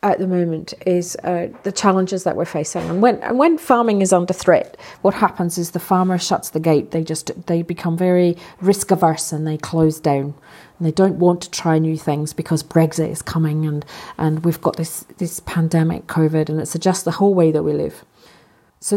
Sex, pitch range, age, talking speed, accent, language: female, 165-205 Hz, 40-59, 215 wpm, British, English